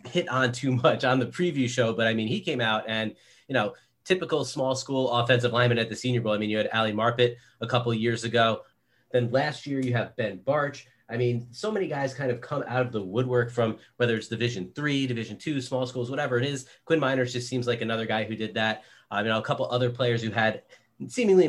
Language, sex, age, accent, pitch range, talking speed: English, male, 30-49, American, 115-130 Hz, 250 wpm